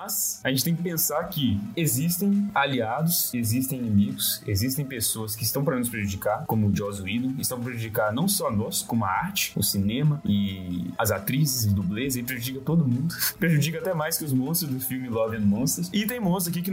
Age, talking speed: 10-29, 210 wpm